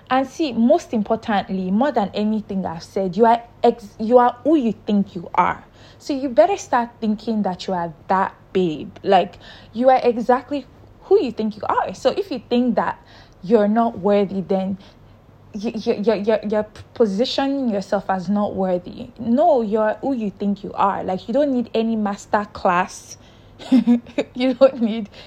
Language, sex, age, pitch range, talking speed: English, female, 20-39, 190-235 Hz, 180 wpm